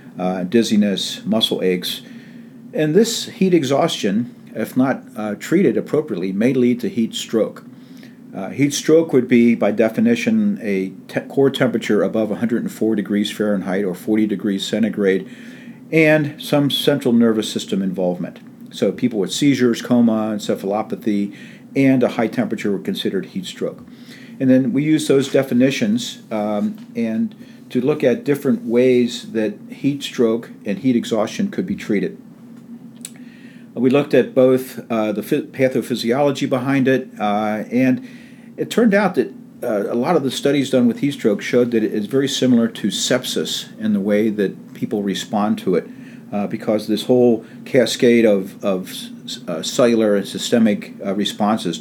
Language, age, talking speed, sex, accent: English, 50-69, 155 wpm, male, American